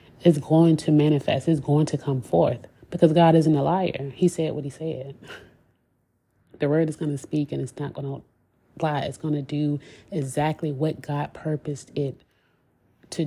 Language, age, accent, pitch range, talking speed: English, 30-49, American, 140-160 Hz, 185 wpm